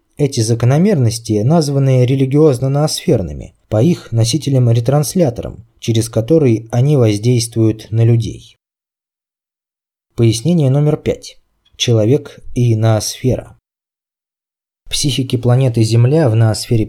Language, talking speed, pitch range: Russian, 85 wpm, 115-145 Hz